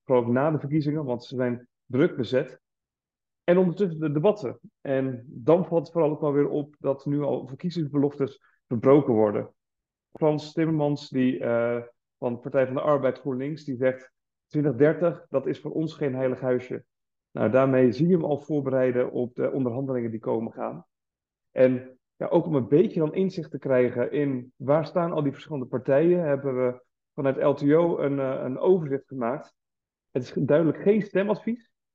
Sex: male